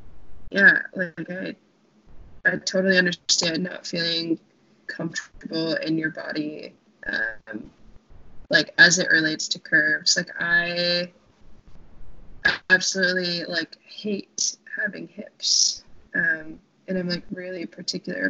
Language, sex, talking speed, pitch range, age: English, female, 105 wpm, 180-215 Hz, 20-39